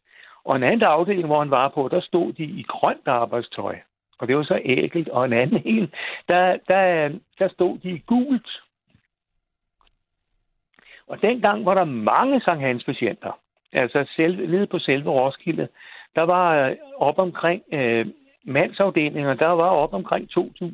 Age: 60-79